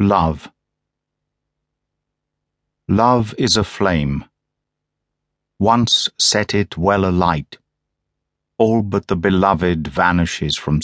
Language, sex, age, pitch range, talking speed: English, male, 50-69, 85-105 Hz, 90 wpm